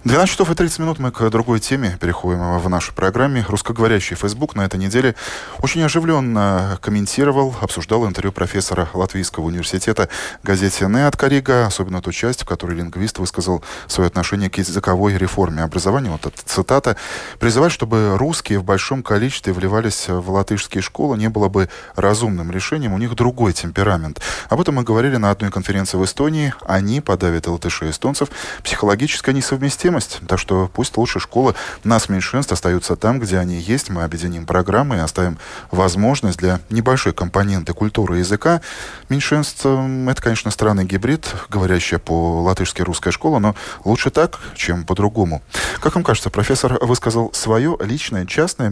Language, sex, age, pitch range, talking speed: Russian, male, 20-39, 90-125 Hz, 155 wpm